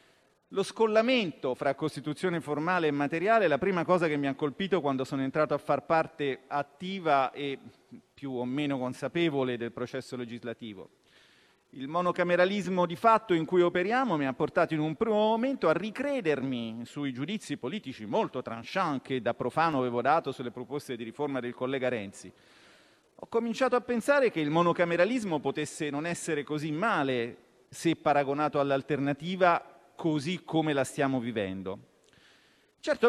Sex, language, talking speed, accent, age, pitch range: male, Italian, 150 wpm, native, 40-59, 135-175 Hz